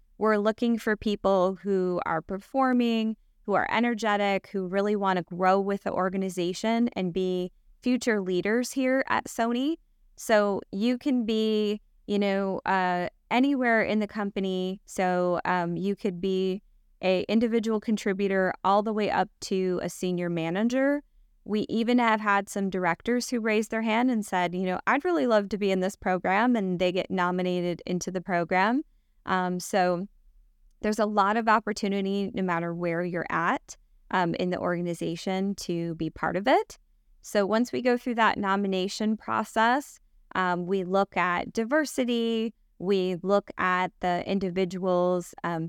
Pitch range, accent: 180-220 Hz, American